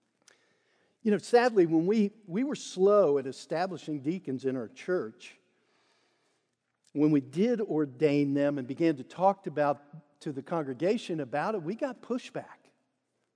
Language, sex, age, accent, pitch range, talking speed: English, male, 50-69, American, 145-195 Hz, 150 wpm